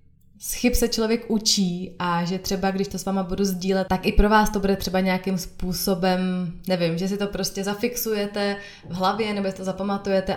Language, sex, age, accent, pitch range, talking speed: Czech, female, 20-39, native, 180-210 Hz, 195 wpm